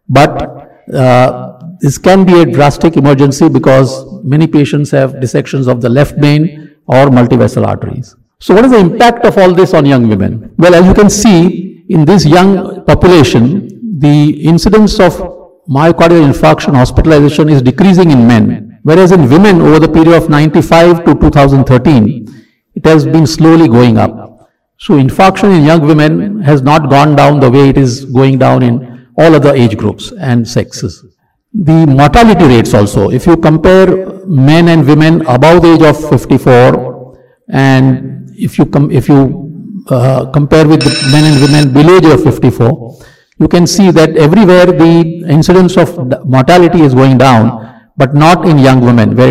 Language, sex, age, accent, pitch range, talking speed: English, male, 50-69, Indian, 130-170 Hz, 170 wpm